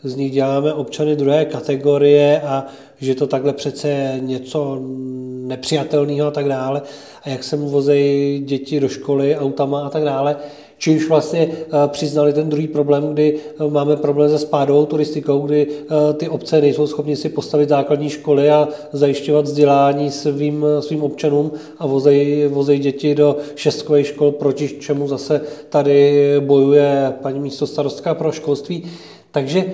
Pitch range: 140-150 Hz